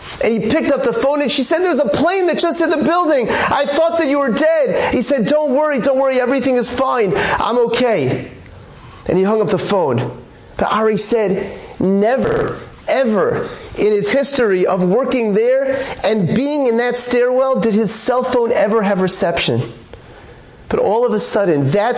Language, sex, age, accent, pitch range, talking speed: English, male, 30-49, American, 210-260 Hz, 190 wpm